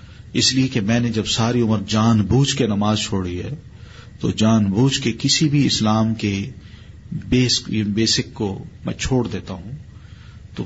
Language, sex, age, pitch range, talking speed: Urdu, male, 40-59, 105-125 Hz, 170 wpm